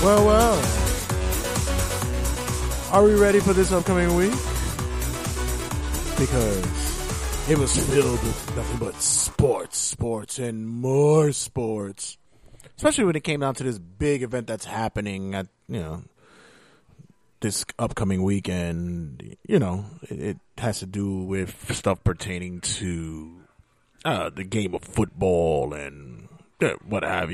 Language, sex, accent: English, male, American